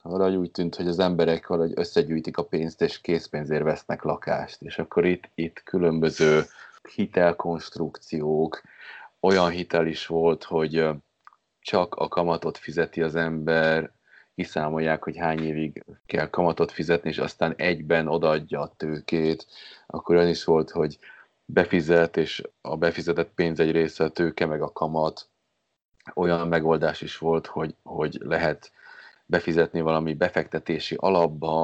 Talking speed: 135 wpm